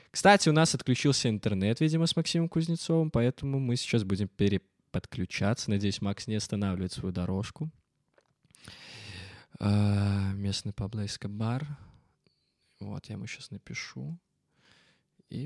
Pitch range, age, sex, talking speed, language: 100-135 Hz, 20-39, male, 115 wpm, Russian